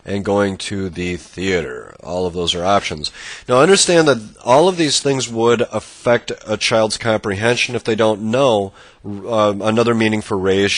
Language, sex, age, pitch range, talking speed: English, male, 30-49, 95-120 Hz, 175 wpm